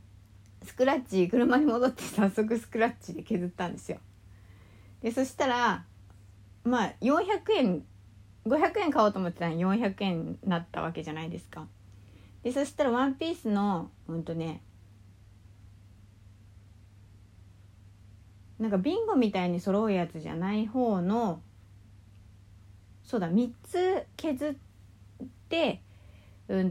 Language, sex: Japanese, female